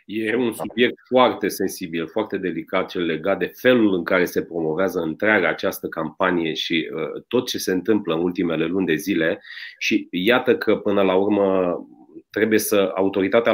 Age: 30-49